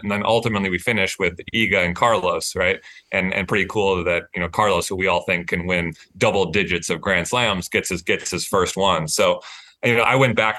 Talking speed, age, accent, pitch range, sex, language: 230 wpm, 30-49, American, 95-120 Hz, male, English